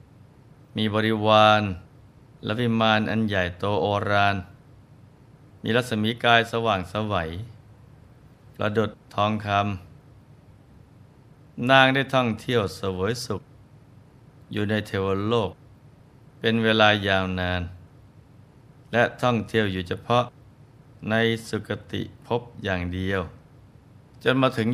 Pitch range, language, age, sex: 100-125 Hz, Thai, 20-39, male